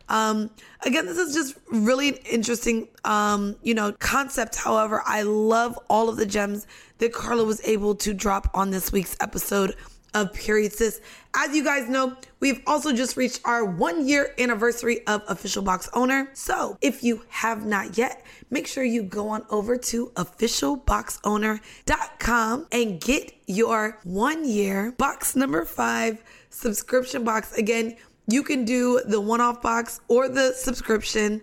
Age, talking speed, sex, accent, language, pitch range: 20-39, 155 wpm, female, American, English, 210-245 Hz